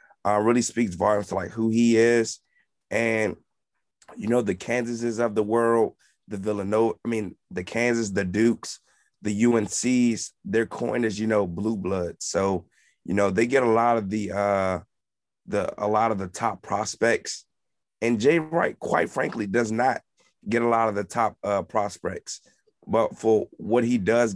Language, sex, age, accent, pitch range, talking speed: English, male, 30-49, American, 100-120 Hz, 170 wpm